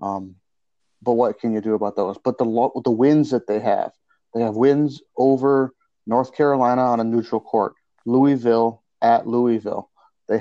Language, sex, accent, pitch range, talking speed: English, male, American, 110-125 Hz, 175 wpm